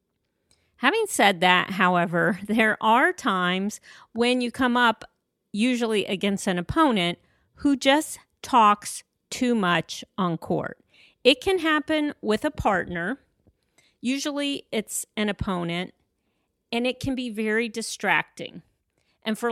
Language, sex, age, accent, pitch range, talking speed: English, female, 40-59, American, 185-245 Hz, 125 wpm